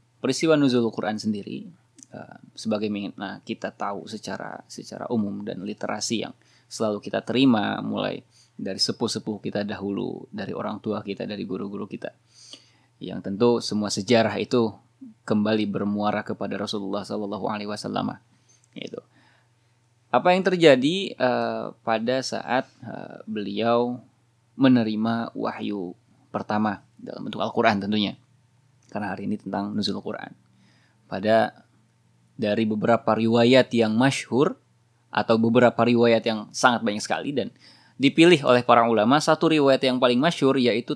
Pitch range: 105-125 Hz